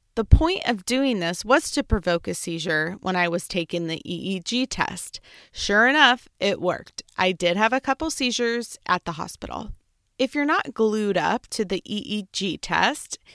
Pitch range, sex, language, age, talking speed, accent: 185-260 Hz, female, English, 20-39, 175 wpm, American